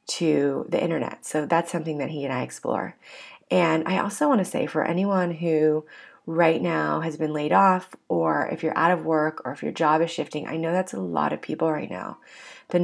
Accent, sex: American, female